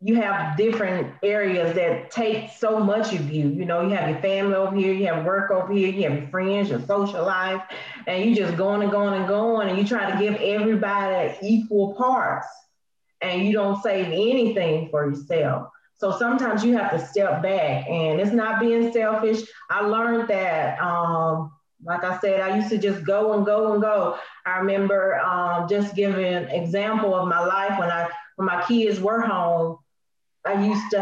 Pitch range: 185-230 Hz